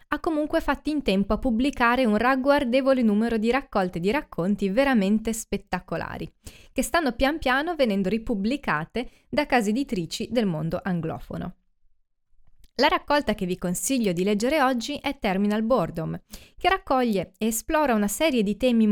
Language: Italian